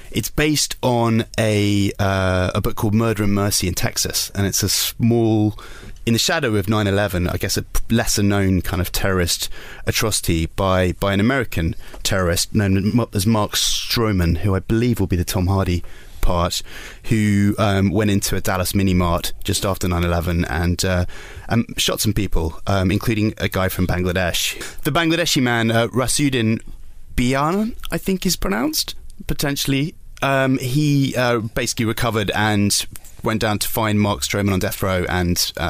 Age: 20-39